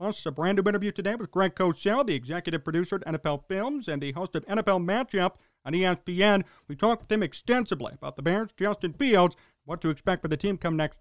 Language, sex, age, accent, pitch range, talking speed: English, male, 40-59, American, 135-205 Hz, 225 wpm